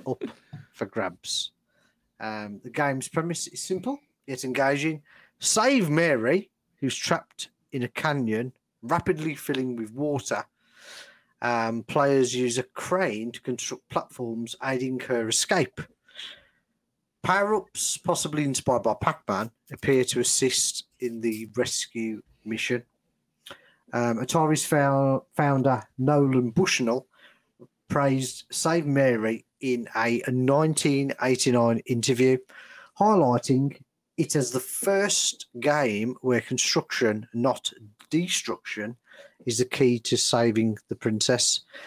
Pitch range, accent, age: 120-145 Hz, British, 40-59